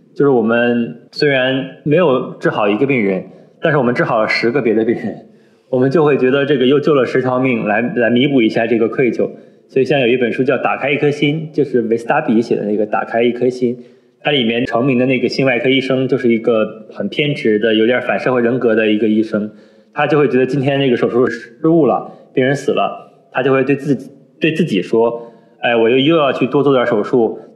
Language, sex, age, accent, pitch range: Chinese, male, 20-39, native, 115-140 Hz